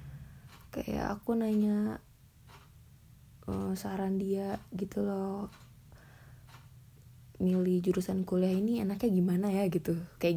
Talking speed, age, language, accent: 100 wpm, 20-39, Indonesian, native